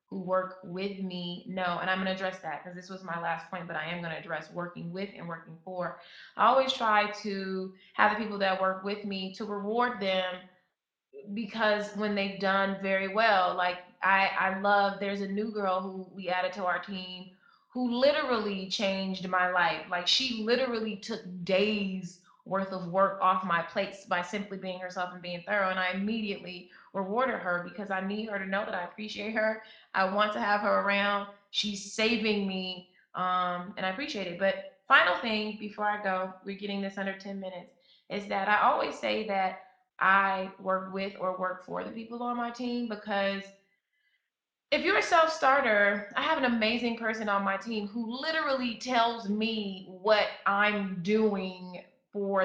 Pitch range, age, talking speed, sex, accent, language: 185-215 Hz, 20-39, 185 wpm, female, American, English